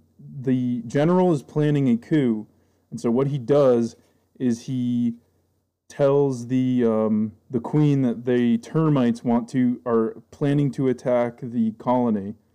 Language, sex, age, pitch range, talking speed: English, male, 20-39, 115-135 Hz, 140 wpm